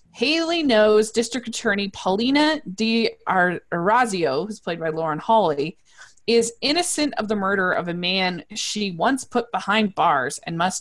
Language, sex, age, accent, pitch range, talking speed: English, female, 20-39, American, 165-220 Hz, 150 wpm